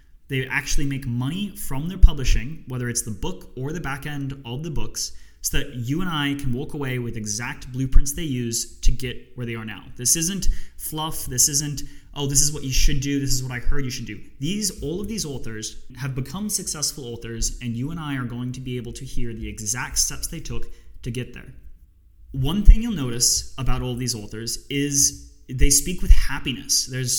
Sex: male